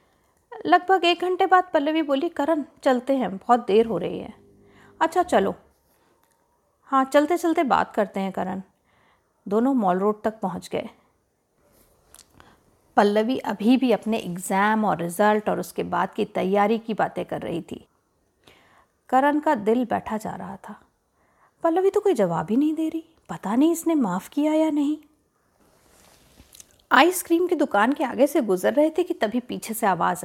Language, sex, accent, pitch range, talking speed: Hindi, female, native, 220-325 Hz, 165 wpm